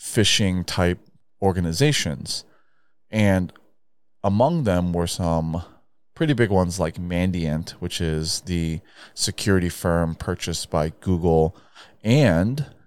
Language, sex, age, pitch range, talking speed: English, male, 30-49, 80-100 Hz, 105 wpm